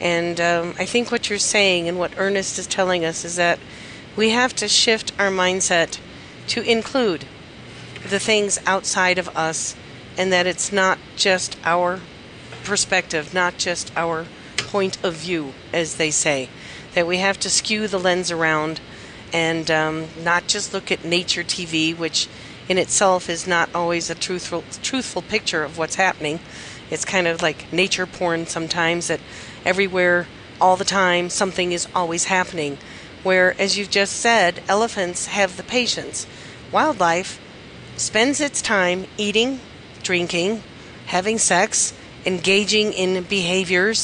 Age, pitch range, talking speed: 40-59, 170-195 Hz, 150 wpm